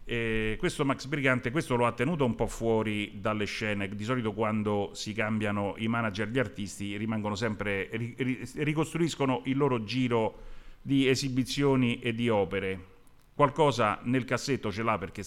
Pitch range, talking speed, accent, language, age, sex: 105-130 Hz, 155 wpm, native, Italian, 40-59, male